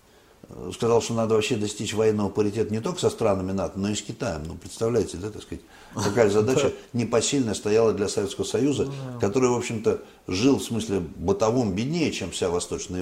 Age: 60-79